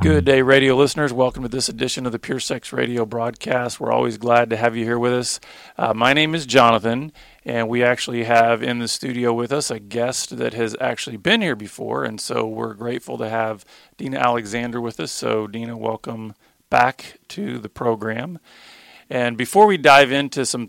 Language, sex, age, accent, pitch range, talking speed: English, male, 40-59, American, 115-130 Hz, 195 wpm